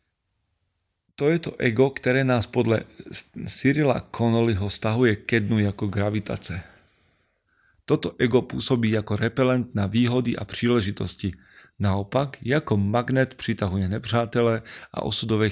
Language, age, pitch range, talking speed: Slovak, 30-49, 100-120 Hz, 120 wpm